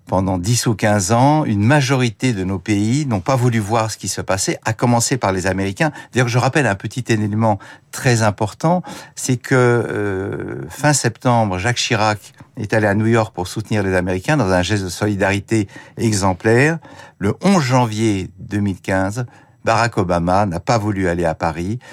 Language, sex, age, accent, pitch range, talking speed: French, male, 60-79, French, 95-125 Hz, 180 wpm